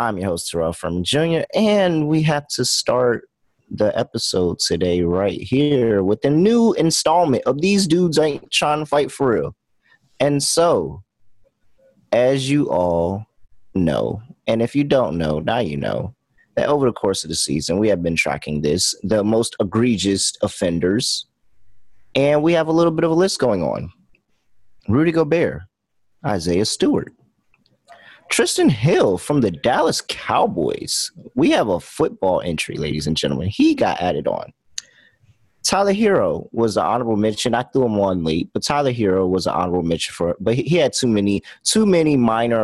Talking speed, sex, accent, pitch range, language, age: 165 wpm, male, American, 90-145 Hz, English, 30-49